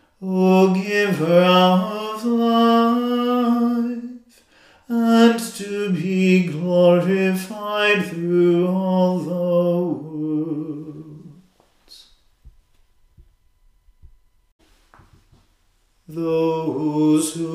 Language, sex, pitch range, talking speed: English, male, 160-190 Hz, 40 wpm